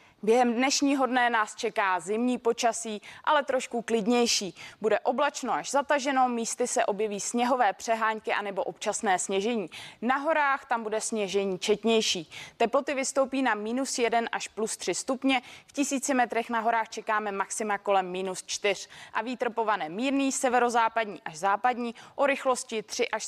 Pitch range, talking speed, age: 215-255 Hz, 145 wpm, 20-39